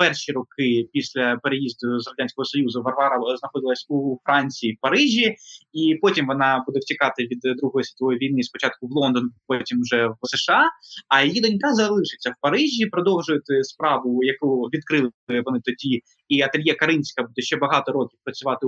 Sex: male